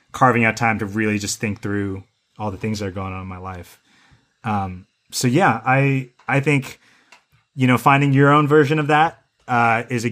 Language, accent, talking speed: English, American, 210 wpm